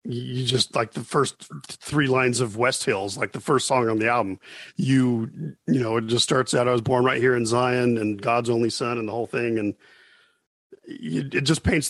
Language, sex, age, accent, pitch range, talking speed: English, male, 40-59, American, 110-135 Hz, 215 wpm